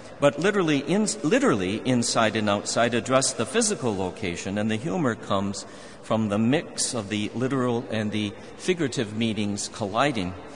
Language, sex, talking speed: English, male, 150 wpm